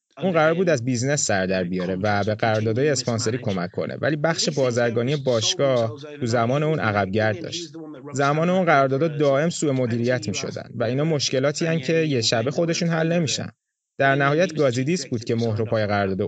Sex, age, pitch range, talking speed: male, 30-49, 115-165 Hz, 175 wpm